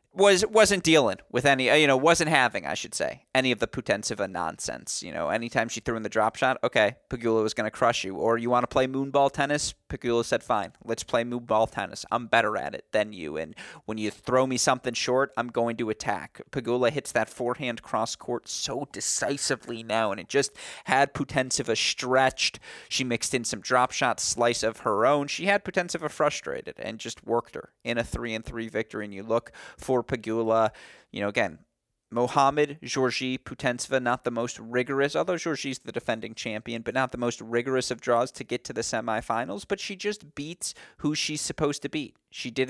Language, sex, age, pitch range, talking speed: English, male, 30-49, 115-145 Hz, 205 wpm